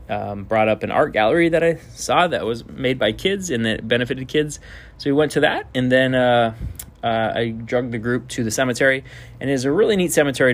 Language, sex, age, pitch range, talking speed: English, male, 20-39, 105-125 Hz, 230 wpm